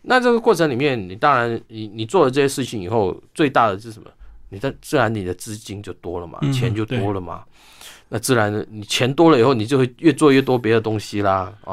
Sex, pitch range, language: male, 105-130 Hz, Chinese